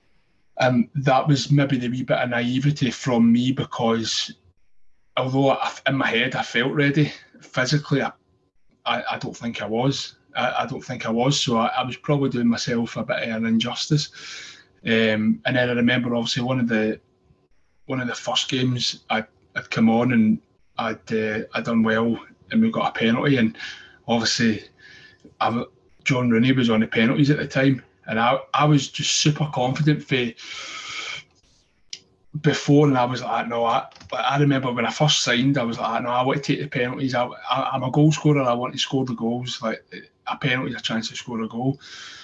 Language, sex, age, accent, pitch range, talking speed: English, male, 20-39, British, 115-140 Hz, 200 wpm